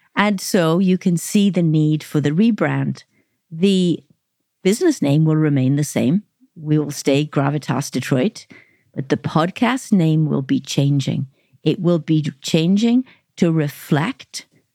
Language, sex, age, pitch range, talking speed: English, female, 50-69, 150-195 Hz, 140 wpm